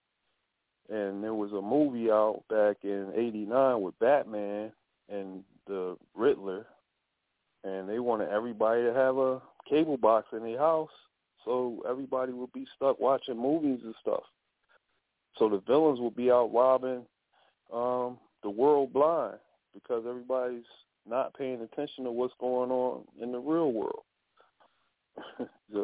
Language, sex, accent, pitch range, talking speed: English, male, American, 115-145 Hz, 140 wpm